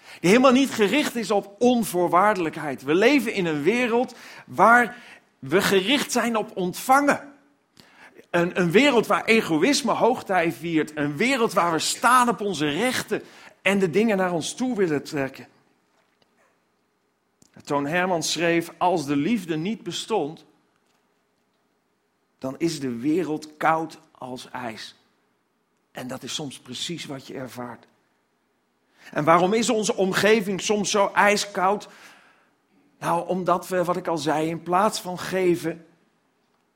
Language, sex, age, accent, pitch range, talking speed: Dutch, male, 50-69, Dutch, 160-210 Hz, 135 wpm